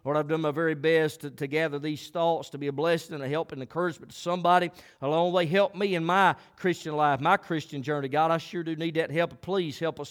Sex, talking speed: male, 260 wpm